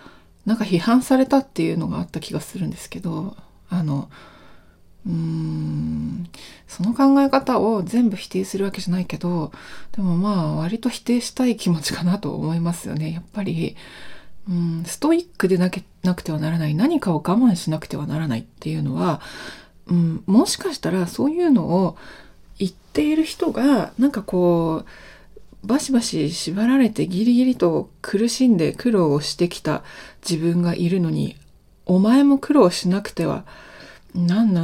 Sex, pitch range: female, 165-240 Hz